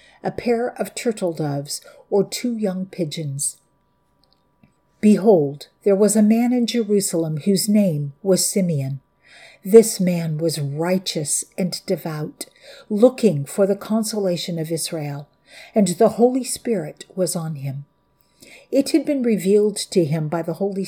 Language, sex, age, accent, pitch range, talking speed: English, female, 50-69, American, 170-220 Hz, 140 wpm